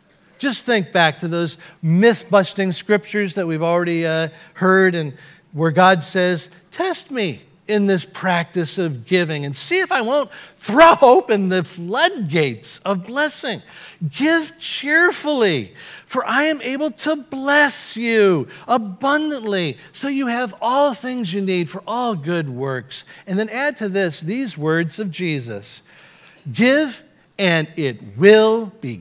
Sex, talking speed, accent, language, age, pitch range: male, 145 wpm, American, English, 50-69, 170-235 Hz